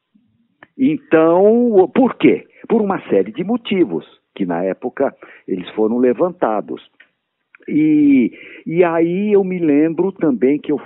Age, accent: 60-79, Brazilian